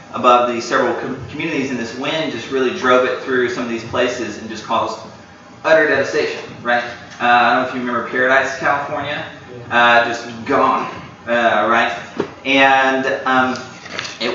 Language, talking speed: English, 165 wpm